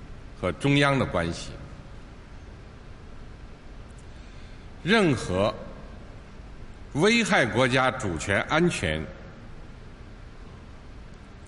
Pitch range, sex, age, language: 105-150 Hz, male, 60-79, Chinese